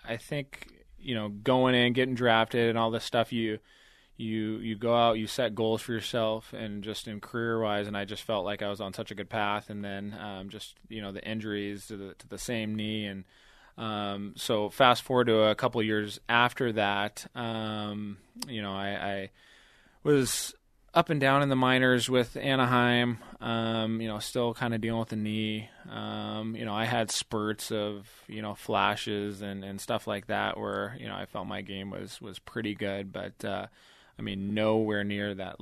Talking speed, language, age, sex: 205 wpm, English, 20-39, male